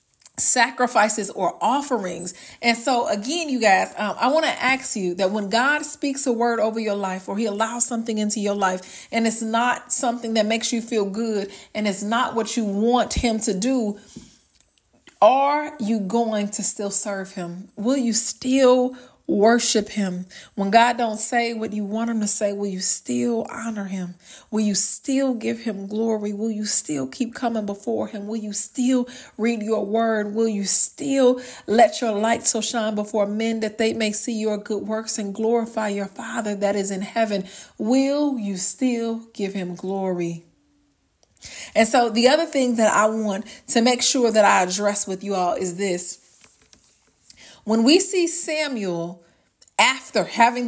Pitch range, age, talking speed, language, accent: 205-245 Hz, 40-59, 180 wpm, English, American